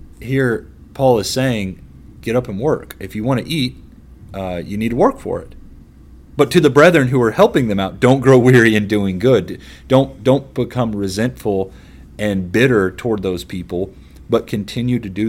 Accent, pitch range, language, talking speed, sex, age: American, 85-120 Hz, English, 190 wpm, male, 30-49